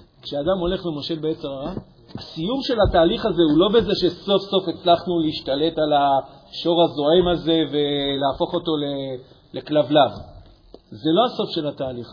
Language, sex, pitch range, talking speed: Hebrew, male, 150-190 Hz, 140 wpm